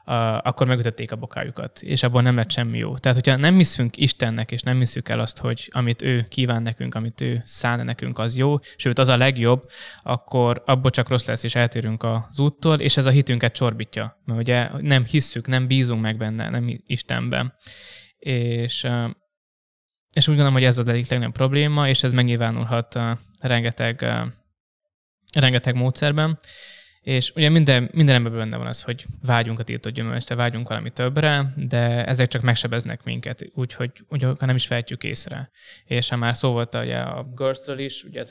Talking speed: 175 wpm